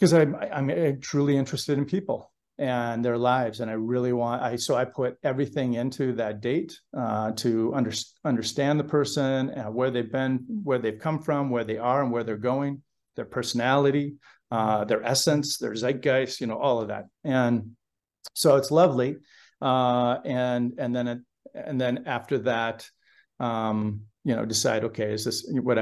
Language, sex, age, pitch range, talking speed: English, male, 40-59, 115-140 Hz, 170 wpm